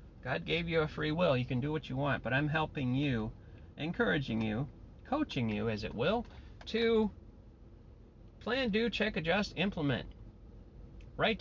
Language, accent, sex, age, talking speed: English, American, male, 40-59, 160 wpm